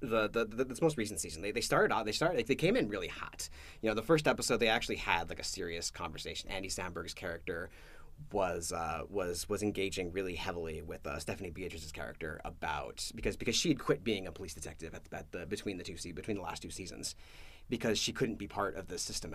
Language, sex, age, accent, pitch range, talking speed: English, male, 30-49, American, 85-120 Hz, 240 wpm